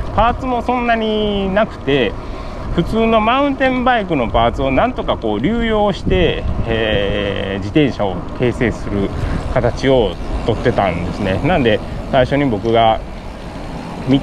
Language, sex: Japanese, male